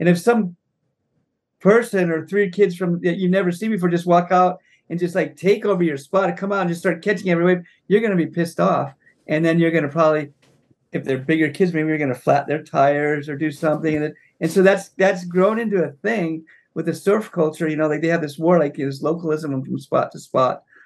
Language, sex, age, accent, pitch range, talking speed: English, male, 50-69, American, 145-180 Hz, 250 wpm